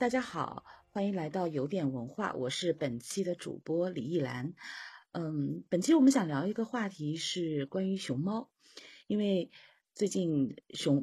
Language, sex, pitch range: Chinese, female, 150-220 Hz